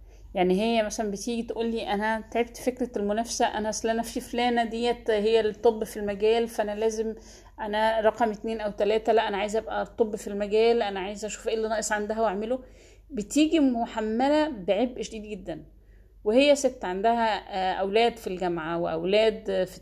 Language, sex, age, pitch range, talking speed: Arabic, female, 30-49, 175-220 Hz, 165 wpm